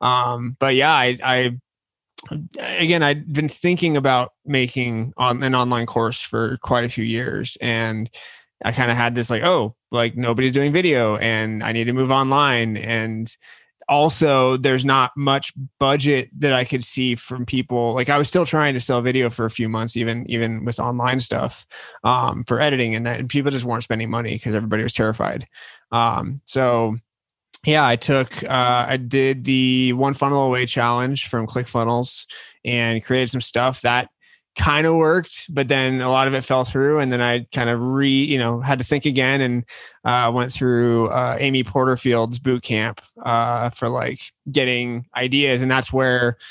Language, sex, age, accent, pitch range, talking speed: English, male, 20-39, American, 115-135 Hz, 180 wpm